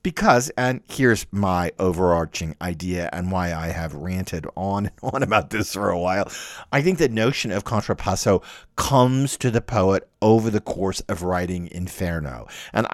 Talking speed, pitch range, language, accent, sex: 165 wpm, 95-125 Hz, English, American, male